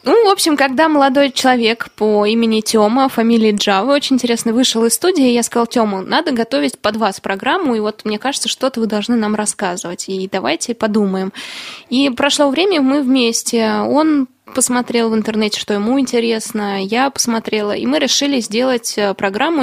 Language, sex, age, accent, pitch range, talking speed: Russian, female, 20-39, native, 210-260 Hz, 170 wpm